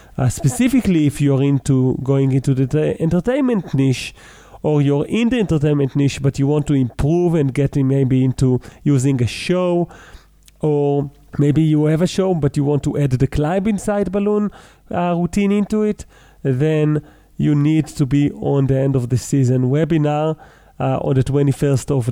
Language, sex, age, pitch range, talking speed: English, male, 40-59, 130-155 Hz, 180 wpm